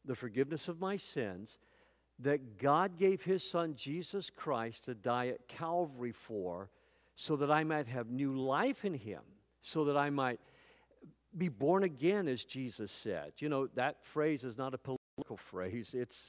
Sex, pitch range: male, 125-175 Hz